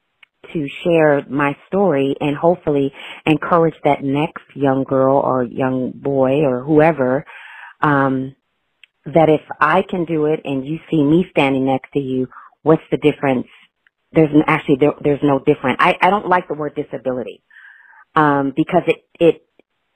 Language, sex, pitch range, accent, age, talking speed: English, female, 135-160 Hz, American, 40-59, 155 wpm